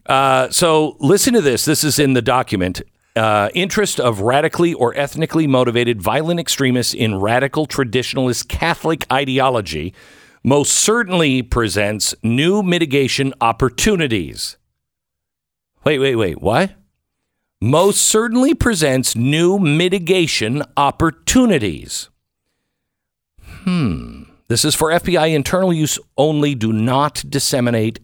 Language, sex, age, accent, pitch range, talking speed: English, male, 50-69, American, 110-155 Hz, 110 wpm